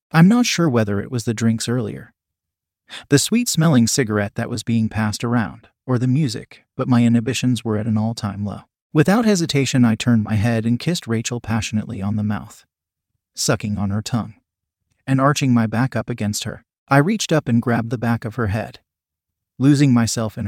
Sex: male